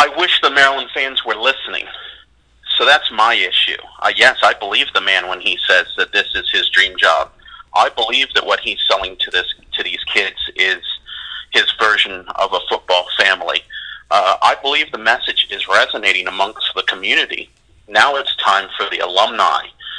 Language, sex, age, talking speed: English, male, 30-49, 180 wpm